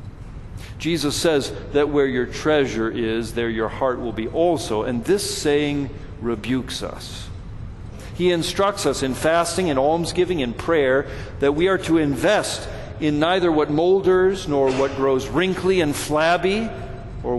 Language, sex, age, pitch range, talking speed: English, male, 50-69, 105-150 Hz, 150 wpm